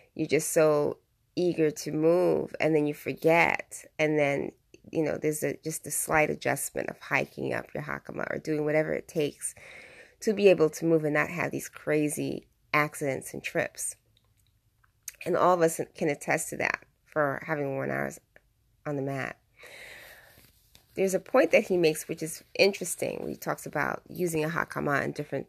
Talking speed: 175 wpm